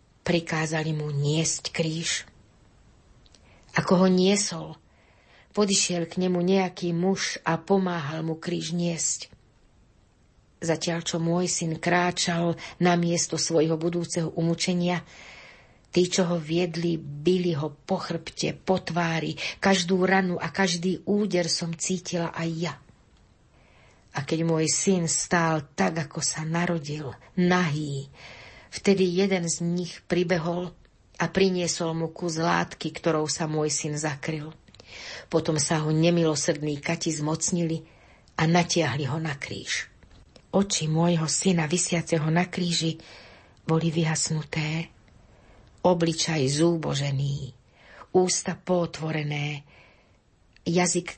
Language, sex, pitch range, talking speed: Slovak, female, 155-180 Hz, 110 wpm